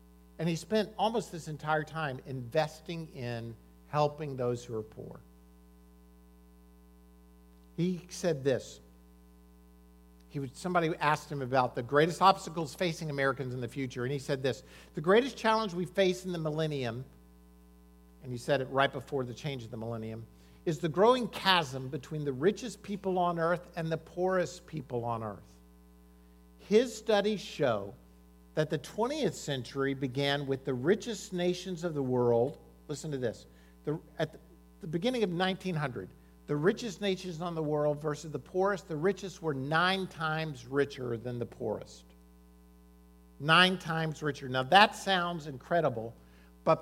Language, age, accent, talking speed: English, 50-69, American, 150 wpm